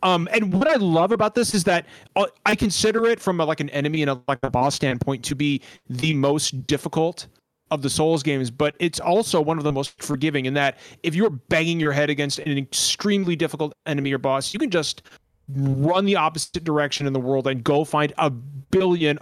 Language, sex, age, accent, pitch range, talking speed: English, male, 30-49, American, 135-175 Hz, 210 wpm